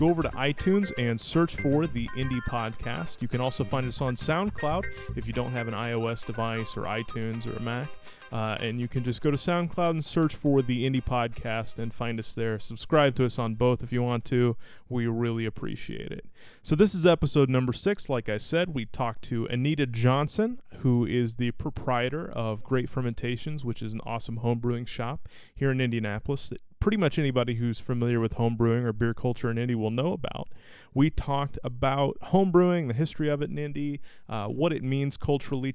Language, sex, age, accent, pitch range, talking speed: English, male, 30-49, American, 115-145 Hz, 205 wpm